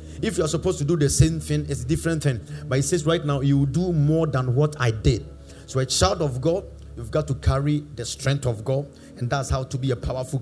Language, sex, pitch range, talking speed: English, male, 130-170 Hz, 260 wpm